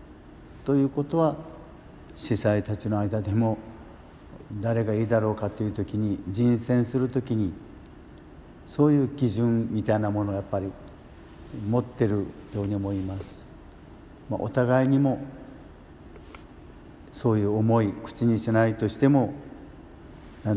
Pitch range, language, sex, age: 100-120 Hz, Japanese, male, 60-79